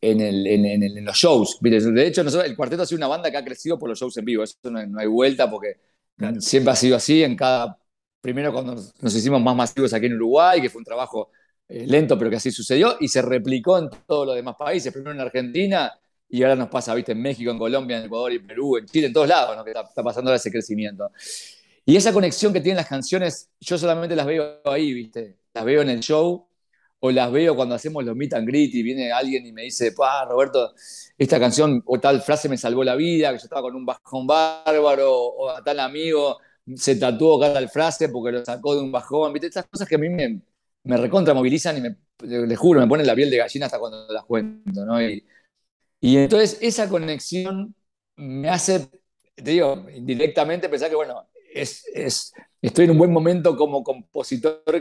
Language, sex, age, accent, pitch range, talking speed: Spanish, male, 50-69, Argentinian, 125-165 Hz, 220 wpm